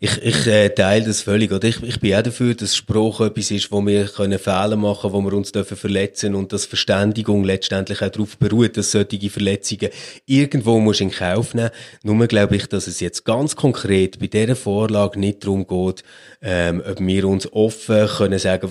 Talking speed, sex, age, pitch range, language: 200 wpm, male, 30-49, 100-115 Hz, German